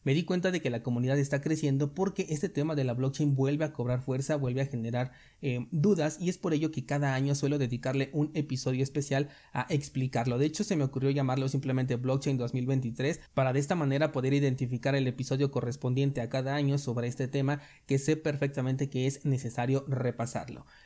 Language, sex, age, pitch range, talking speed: Spanish, male, 30-49, 130-150 Hz, 200 wpm